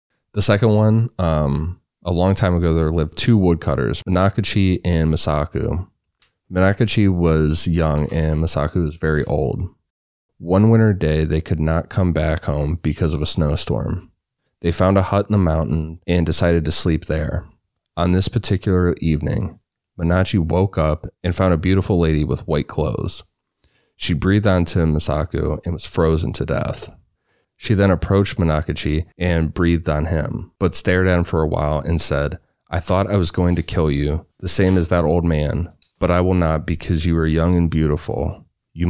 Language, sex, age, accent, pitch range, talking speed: English, male, 30-49, American, 80-95 Hz, 175 wpm